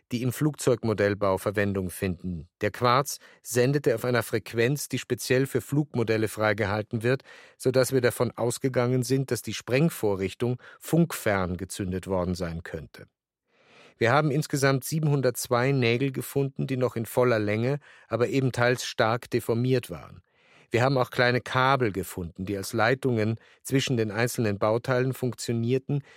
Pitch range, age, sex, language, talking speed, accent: 110-135 Hz, 50-69, male, German, 140 wpm, German